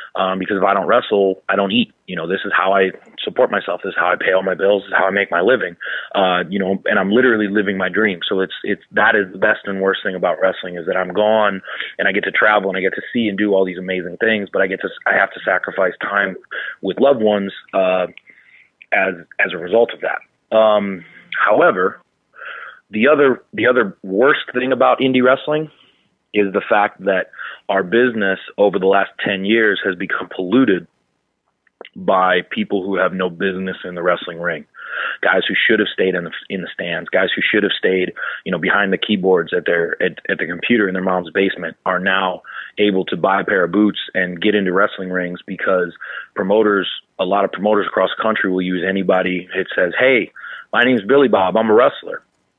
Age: 30-49